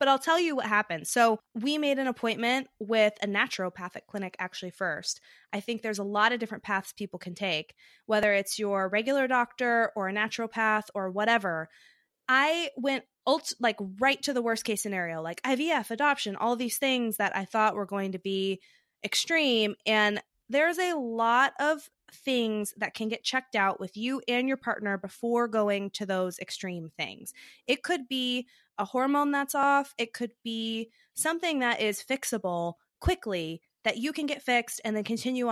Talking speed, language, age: 175 wpm, English, 20-39